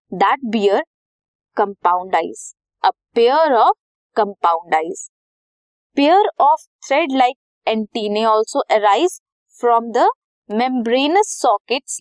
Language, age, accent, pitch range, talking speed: Hindi, 20-39, native, 220-325 Hz, 100 wpm